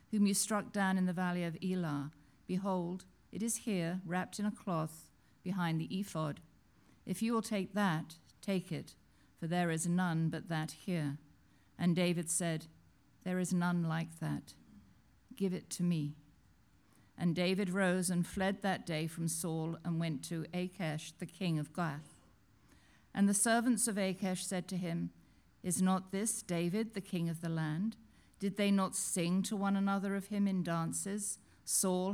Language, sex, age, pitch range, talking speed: English, female, 50-69, 160-195 Hz, 170 wpm